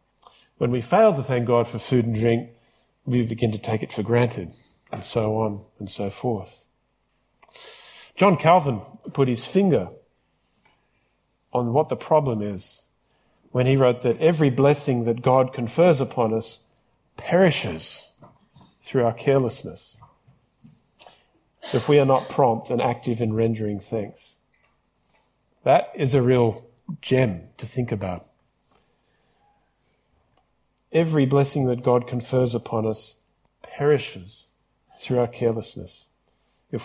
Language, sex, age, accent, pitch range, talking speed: English, male, 40-59, Australian, 115-145 Hz, 125 wpm